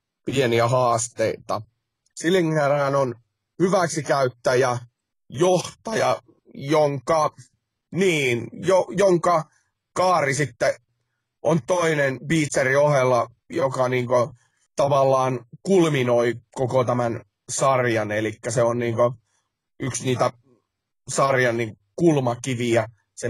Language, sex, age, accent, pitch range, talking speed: Finnish, male, 30-49, native, 120-155 Hz, 80 wpm